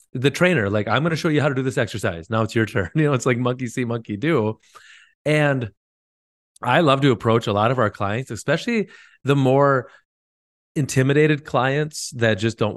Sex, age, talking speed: male, 30-49, 200 wpm